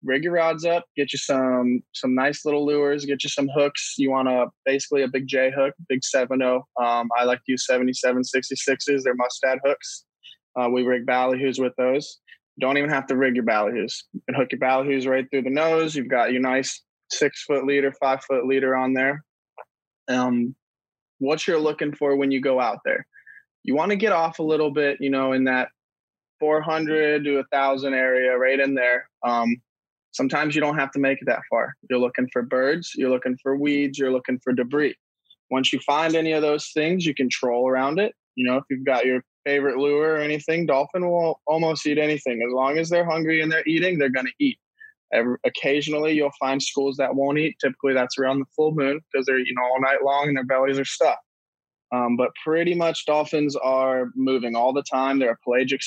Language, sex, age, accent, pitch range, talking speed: English, male, 20-39, American, 130-150 Hz, 215 wpm